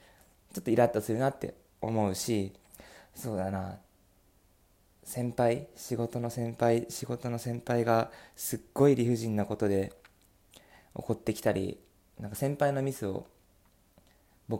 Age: 20-39